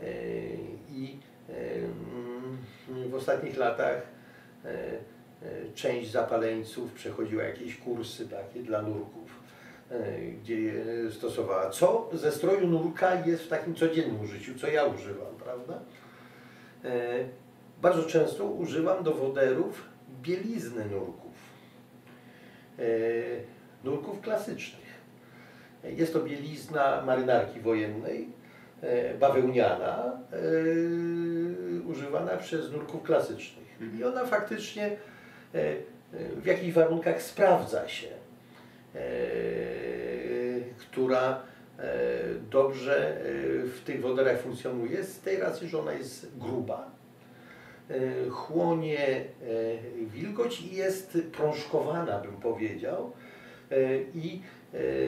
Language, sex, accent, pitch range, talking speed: Polish, male, native, 115-170 Hz, 85 wpm